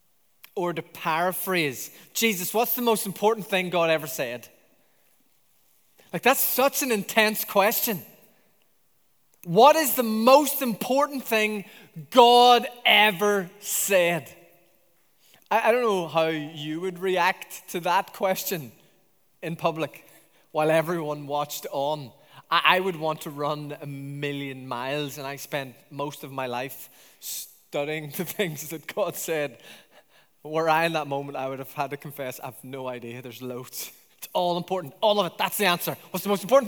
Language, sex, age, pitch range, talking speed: English, male, 20-39, 140-200 Hz, 155 wpm